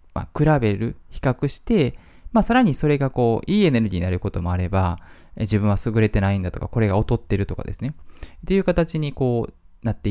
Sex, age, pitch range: male, 20-39, 90-130 Hz